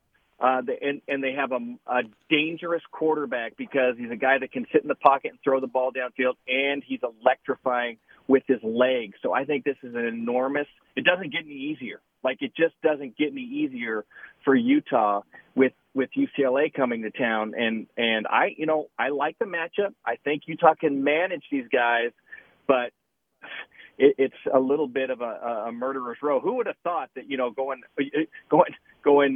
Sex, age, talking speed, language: male, 40-59, 190 wpm, English